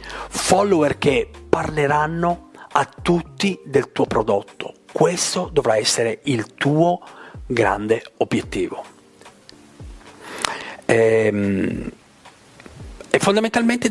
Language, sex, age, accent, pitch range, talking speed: Italian, male, 50-69, native, 115-155 Hz, 80 wpm